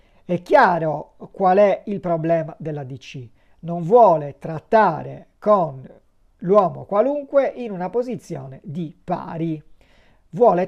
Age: 40-59